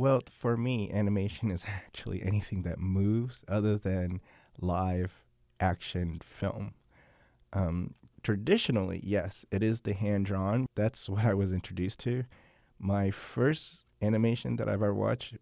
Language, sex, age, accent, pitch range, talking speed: English, male, 30-49, American, 95-115 Hz, 130 wpm